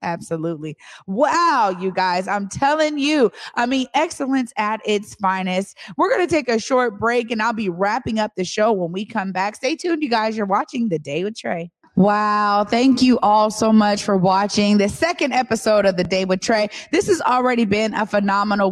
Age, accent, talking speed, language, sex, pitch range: 20-39, American, 200 wpm, English, female, 195-235 Hz